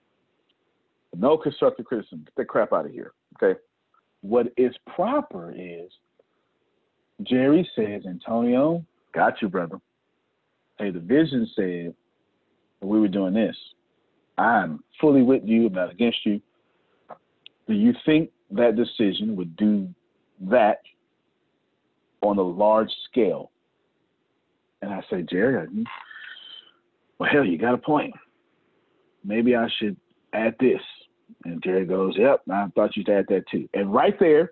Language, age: English, 40-59